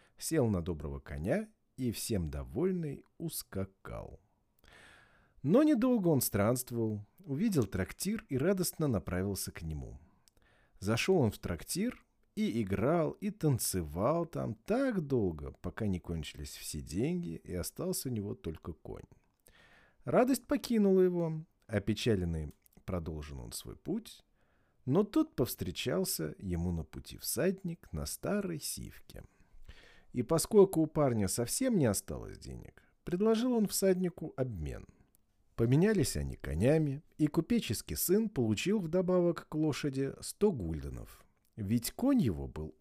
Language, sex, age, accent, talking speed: Russian, male, 40-59, native, 125 wpm